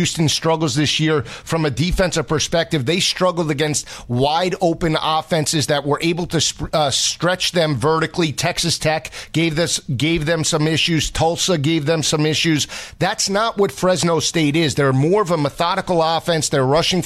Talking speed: 170 wpm